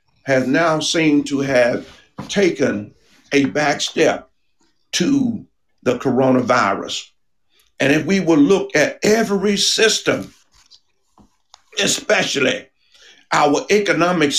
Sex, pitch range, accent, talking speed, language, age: male, 135-205 Hz, American, 95 wpm, English, 50-69